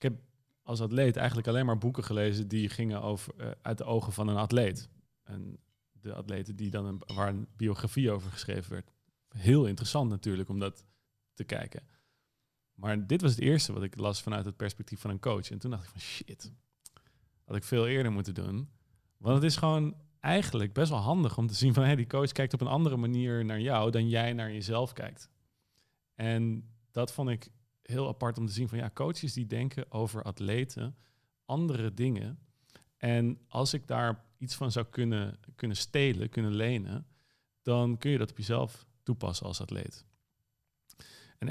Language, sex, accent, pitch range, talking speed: Dutch, male, Dutch, 105-130 Hz, 190 wpm